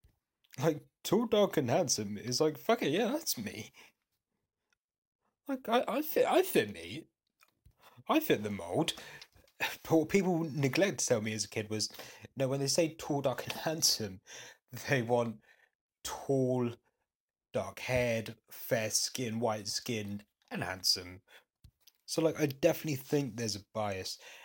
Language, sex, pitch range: English, male, 110-150 Hz